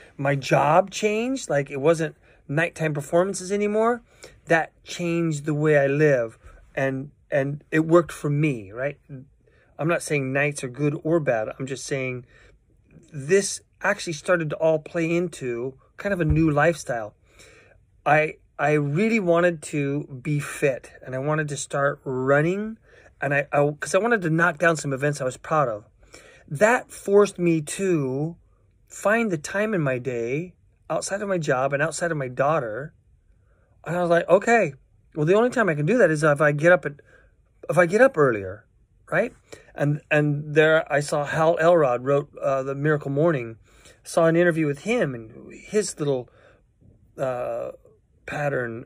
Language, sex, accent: English, male, American